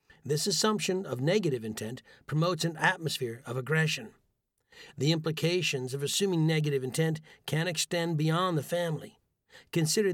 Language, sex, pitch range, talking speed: English, male, 145-180 Hz, 130 wpm